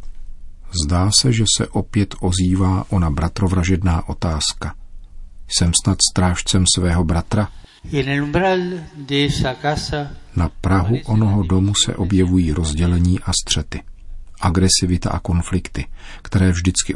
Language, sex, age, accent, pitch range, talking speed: Czech, male, 40-59, native, 80-100 Hz, 100 wpm